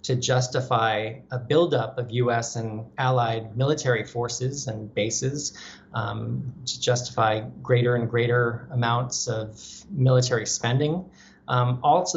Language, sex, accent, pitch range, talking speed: English, male, American, 115-130 Hz, 120 wpm